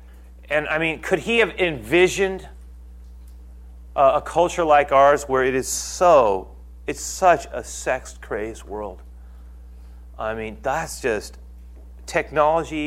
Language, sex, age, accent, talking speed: English, male, 30-49, American, 120 wpm